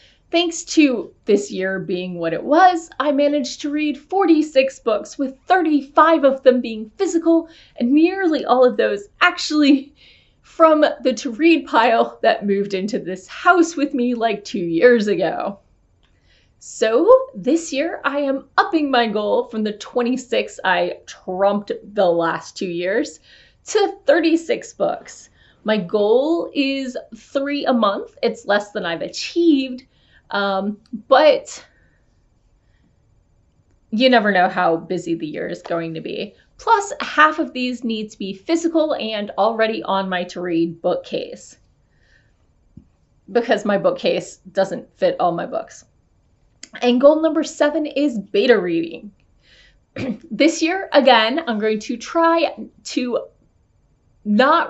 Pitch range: 210-310 Hz